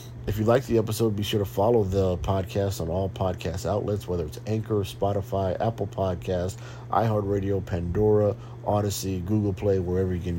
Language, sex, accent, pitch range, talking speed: English, male, American, 90-110 Hz, 170 wpm